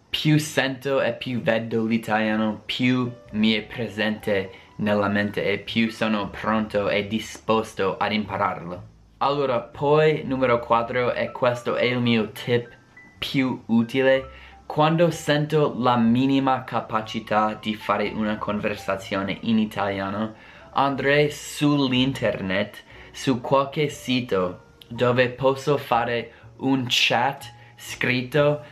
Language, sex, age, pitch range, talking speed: Italian, male, 20-39, 105-130 Hz, 115 wpm